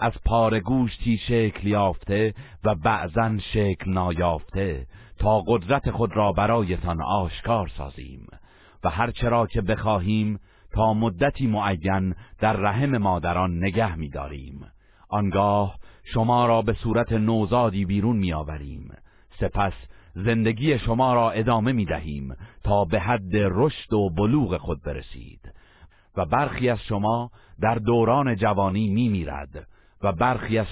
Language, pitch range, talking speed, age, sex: Persian, 90-115 Hz, 125 wpm, 50-69, male